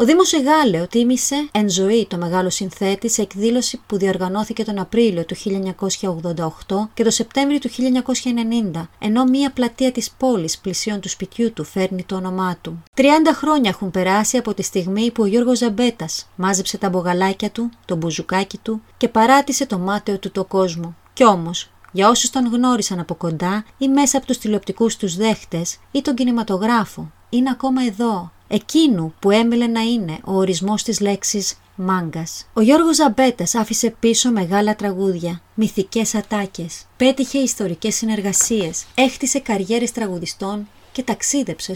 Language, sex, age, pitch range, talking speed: Greek, female, 30-49, 190-240 Hz, 155 wpm